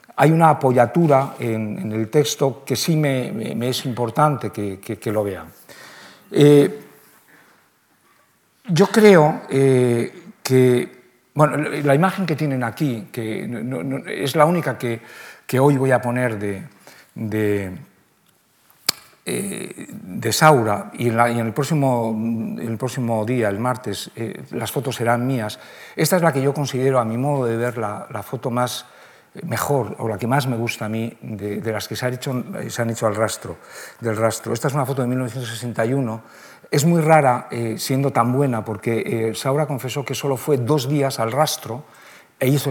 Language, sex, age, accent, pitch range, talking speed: Spanish, male, 60-79, Spanish, 115-140 Hz, 165 wpm